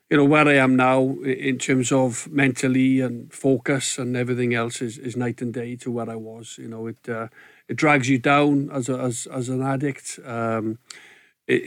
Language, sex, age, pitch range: English, male, 50-69, 120-135 Hz